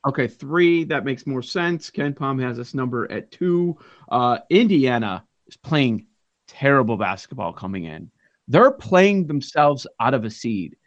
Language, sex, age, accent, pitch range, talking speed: English, male, 40-59, American, 120-170 Hz, 155 wpm